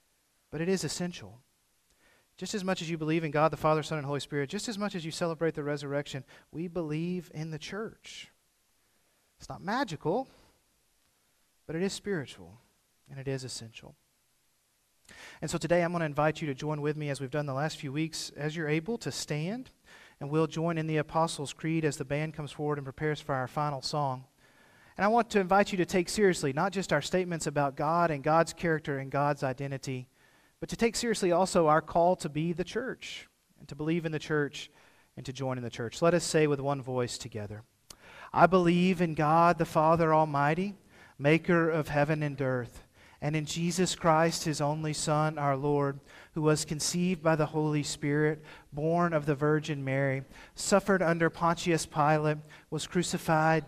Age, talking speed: 40-59, 195 wpm